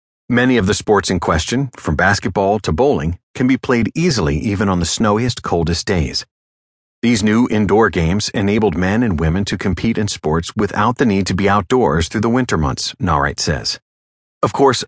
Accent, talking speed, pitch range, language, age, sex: American, 185 wpm, 85-125 Hz, English, 40-59, male